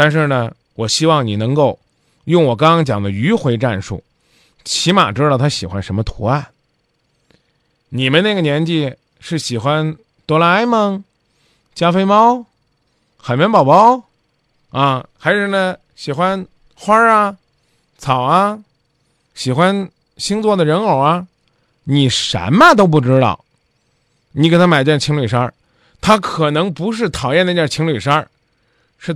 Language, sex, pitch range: Chinese, male, 115-155 Hz